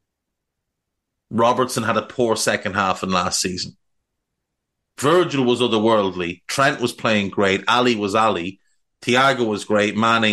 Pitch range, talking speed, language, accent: 110-150 Hz, 135 wpm, English, Irish